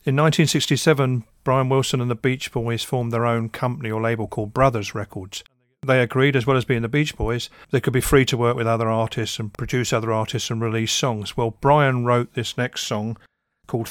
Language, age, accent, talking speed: English, 40-59, British, 210 wpm